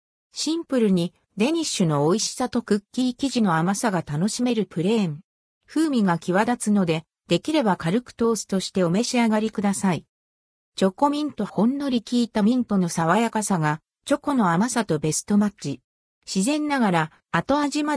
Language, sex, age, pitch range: Japanese, female, 50-69, 170-250 Hz